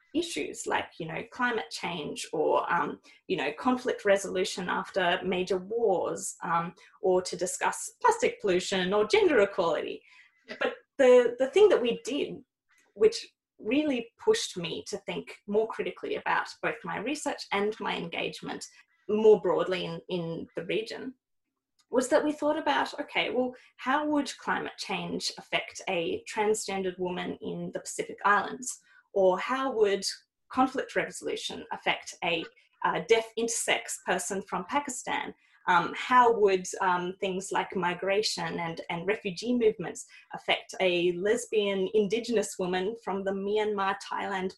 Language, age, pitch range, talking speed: English, 20-39, 190-265 Hz, 140 wpm